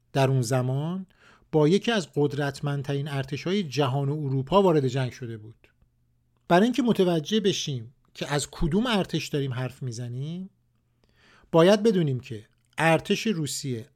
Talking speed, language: 135 wpm, Persian